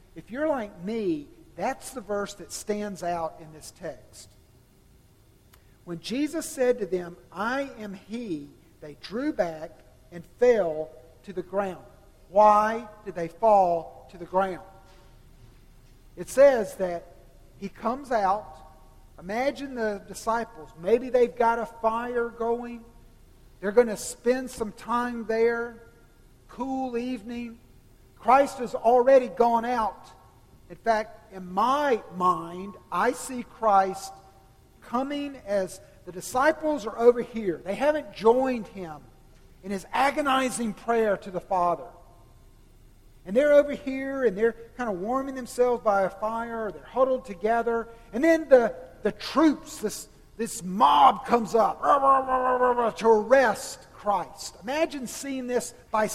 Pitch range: 175-245 Hz